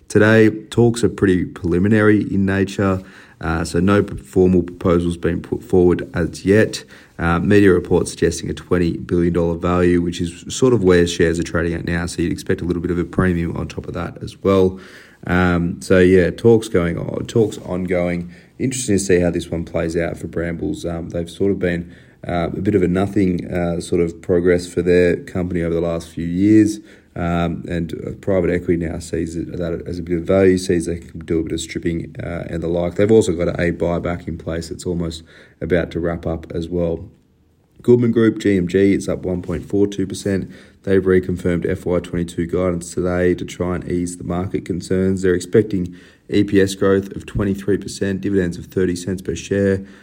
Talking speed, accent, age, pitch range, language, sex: 190 wpm, Australian, 30-49, 85-95 Hz, English, male